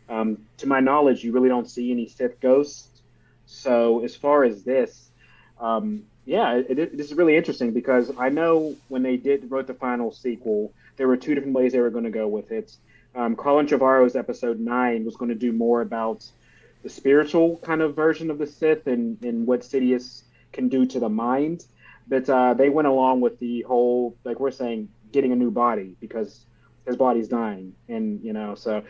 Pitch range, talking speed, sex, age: 115-135 Hz, 195 wpm, male, 30-49